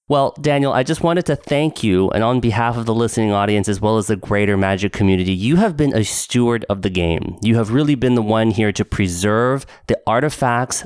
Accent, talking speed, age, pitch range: American, 225 wpm, 30-49, 105-145 Hz